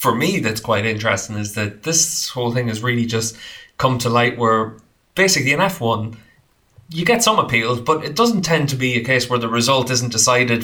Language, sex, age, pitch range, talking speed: English, male, 20-39, 110-125 Hz, 210 wpm